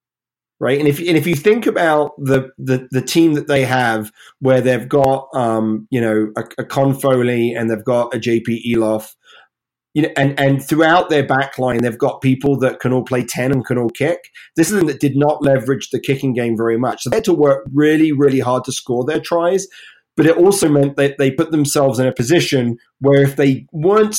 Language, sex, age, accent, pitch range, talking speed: English, male, 30-49, British, 125-155 Hz, 220 wpm